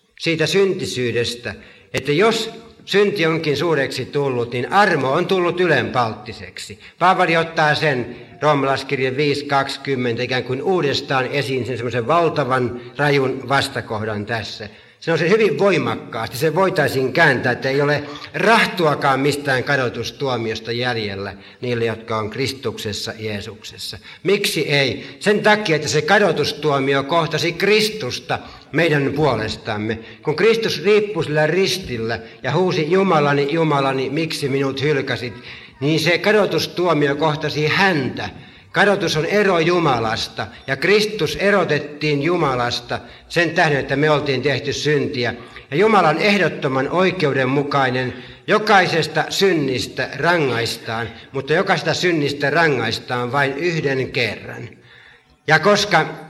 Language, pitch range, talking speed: Finnish, 125-165 Hz, 115 wpm